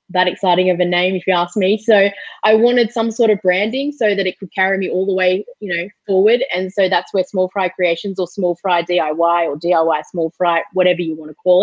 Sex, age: female, 20-39